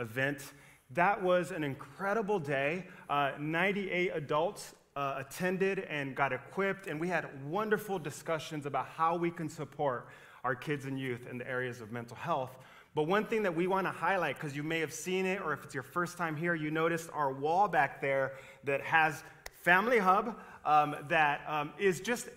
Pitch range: 140-180 Hz